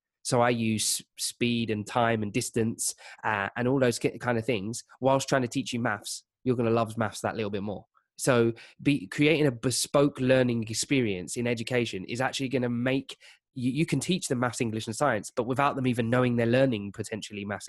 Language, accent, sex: English, British, male